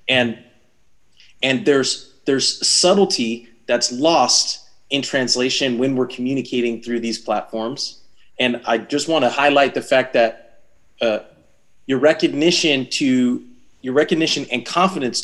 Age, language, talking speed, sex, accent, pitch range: 30-49, English, 125 wpm, male, American, 120-140 Hz